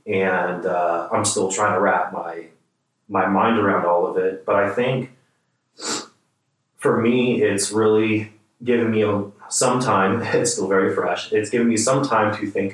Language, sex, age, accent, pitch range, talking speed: English, male, 30-49, American, 95-110 Hz, 170 wpm